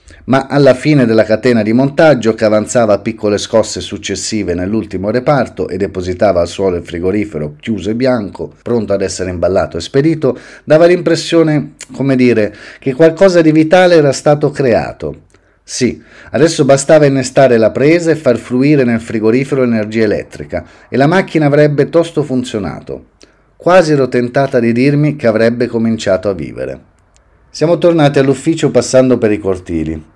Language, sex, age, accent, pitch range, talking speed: Italian, male, 30-49, native, 110-160 Hz, 155 wpm